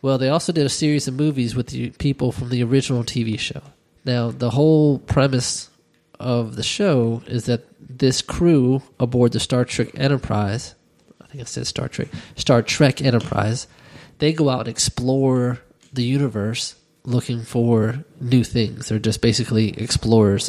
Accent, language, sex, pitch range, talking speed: American, English, male, 110-130 Hz, 165 wpm